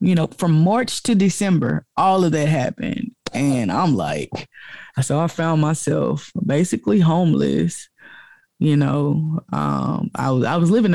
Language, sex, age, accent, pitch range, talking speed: English, female, 20-39, American, 150-180 Hz, 145 wpm